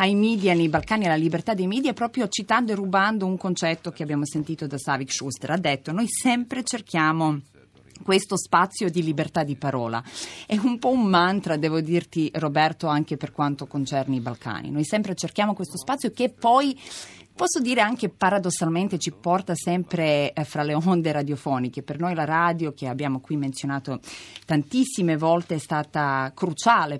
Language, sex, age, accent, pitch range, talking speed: Italian, female, 30-49, native, 145-190 Hz, 170 wpm